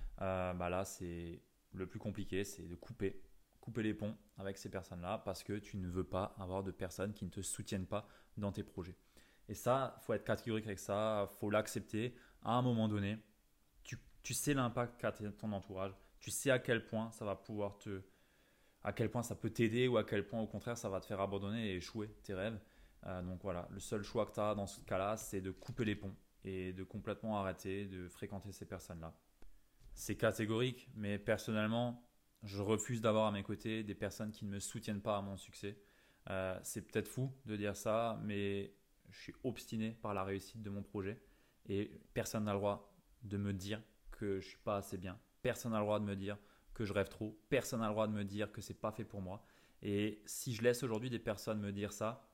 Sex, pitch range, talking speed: male, 95-110 Hz, 225 wpm